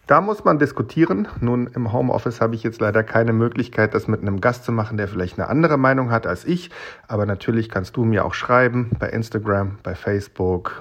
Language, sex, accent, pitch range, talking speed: German, male, German, 105-125 Hz, 210 wpm